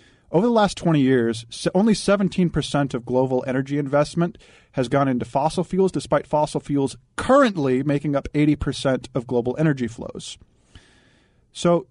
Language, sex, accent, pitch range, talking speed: English, male, American, 125-170 Hz, 140 wpm